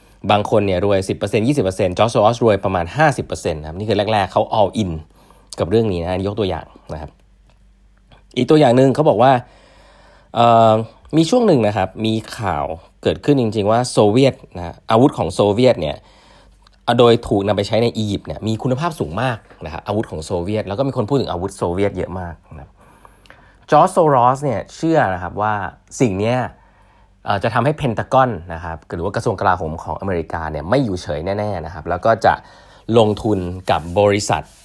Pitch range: 90-120 Hz